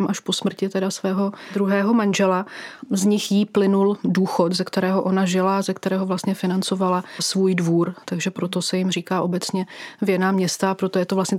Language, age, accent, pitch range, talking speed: Czech, 30-49, native, 185-205 Hz, 180 wpm